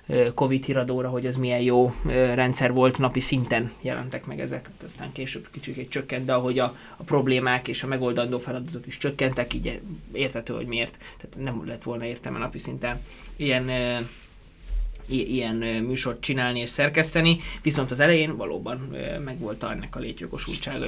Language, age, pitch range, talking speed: Hungarian, 20-39, 125-140 Hz, 150 wpm